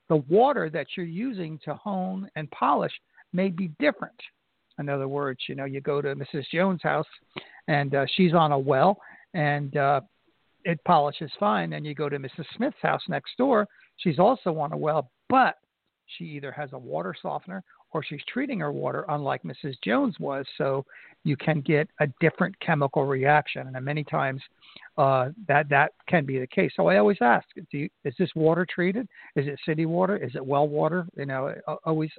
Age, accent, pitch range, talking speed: 60-79, American, 145-185 Hz, 190 wpm